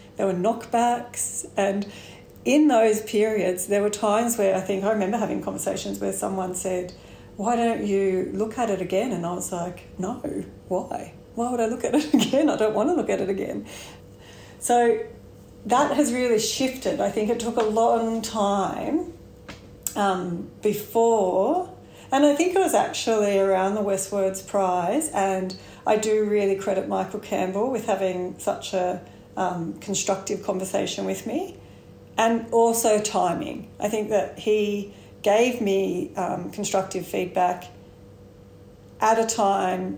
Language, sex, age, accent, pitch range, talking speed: English, female, 40-59, Australian, 180-225 Hz, 155 wpm